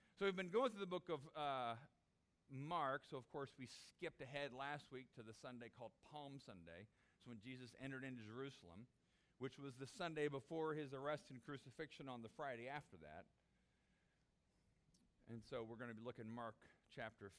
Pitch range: 110-155 Hz